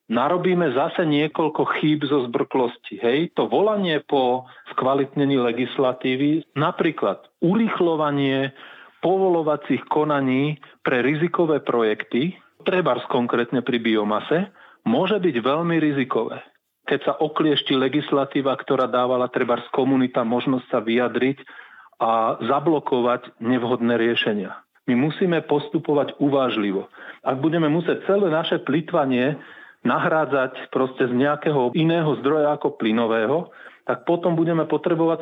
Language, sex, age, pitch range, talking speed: Slovak, male, 40-59, 130-160 Hz, 110 wpm